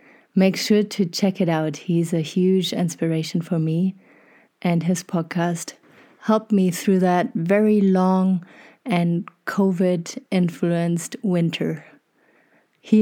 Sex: female